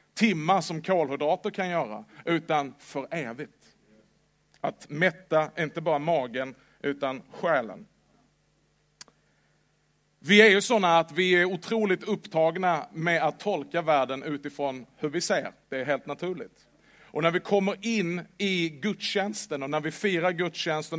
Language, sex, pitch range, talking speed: Swedish, male, 155-195 Hz, 135 wpm